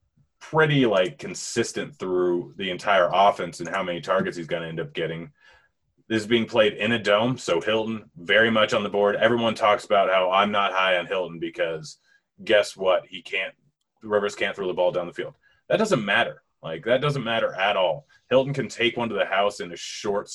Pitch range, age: 90-120 Hz, 30-49